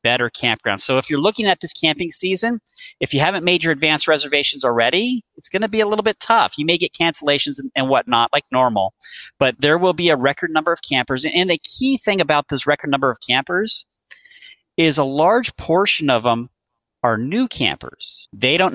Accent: American